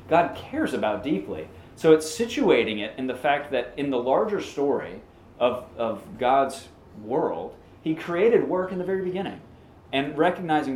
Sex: male